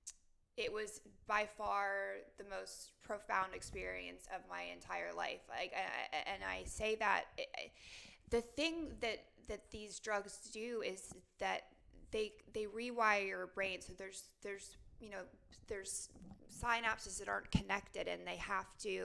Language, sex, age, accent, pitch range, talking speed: English, female, 20-39, American, 195-220 Hz, 145 wpm